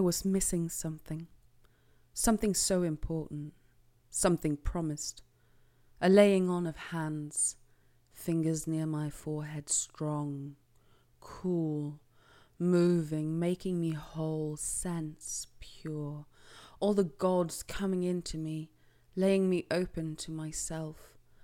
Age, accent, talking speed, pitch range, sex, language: 20-39, British, 105 wpm, 150-175 Hz, female, English